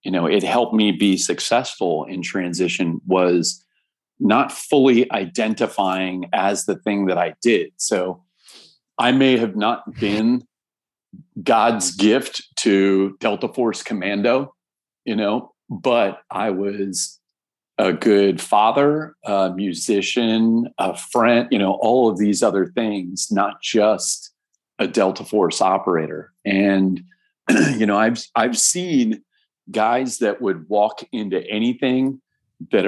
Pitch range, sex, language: 95-130 Hz, male, English